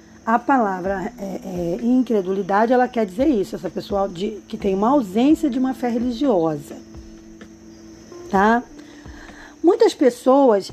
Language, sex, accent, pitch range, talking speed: Portuguese, female, Brazilian, 200-265 Hz, 110 wpm